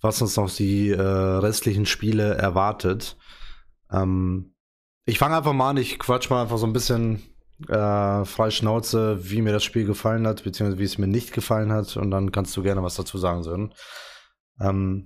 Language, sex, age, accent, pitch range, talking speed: German, male, 20-39, German, 100-120 Hz, 185 wpm